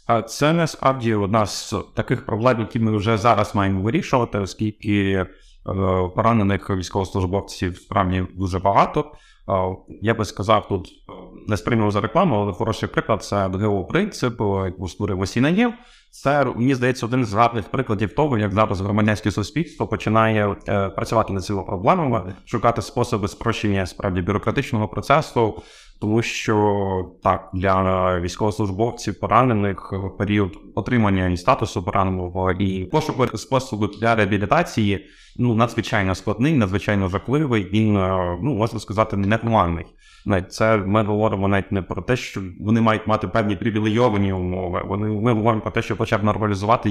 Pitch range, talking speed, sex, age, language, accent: 100-125 Hz, 140 wpm, male, 30-49, Ukrainian, native